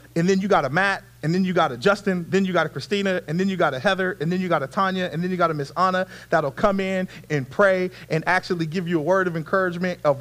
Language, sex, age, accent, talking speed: English, male, 30-49, American, 295 wpm